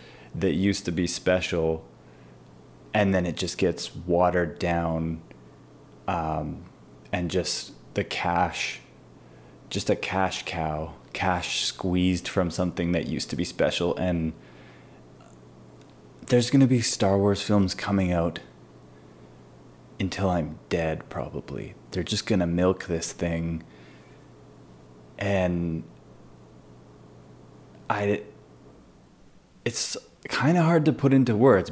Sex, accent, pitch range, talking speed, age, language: male, American, 80-105 Hz, 115 wpm, 20-39, English